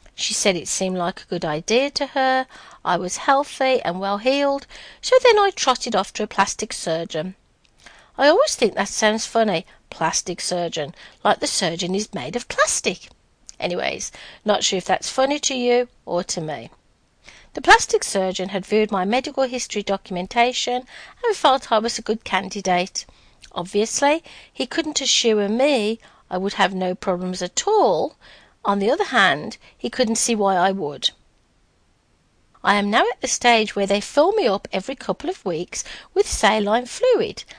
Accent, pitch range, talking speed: British, 190-265 Hz, 170 wpm